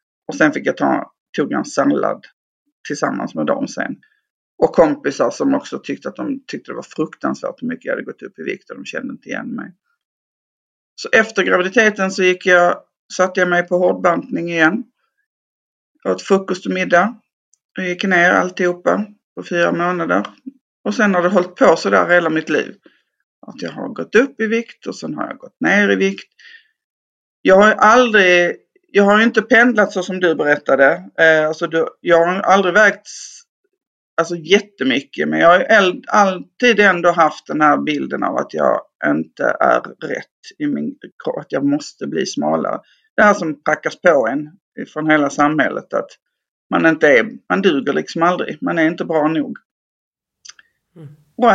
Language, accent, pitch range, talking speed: English, Swedish, 170-245 Hz, 175 wpm